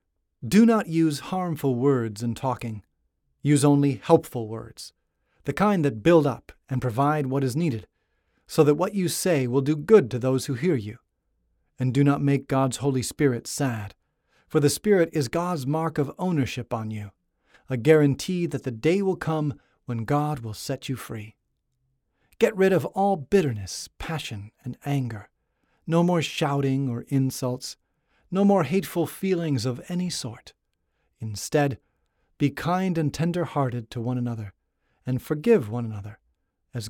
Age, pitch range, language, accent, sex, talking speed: 40-59, 120-155 Hz, English, American, male, 160 wpm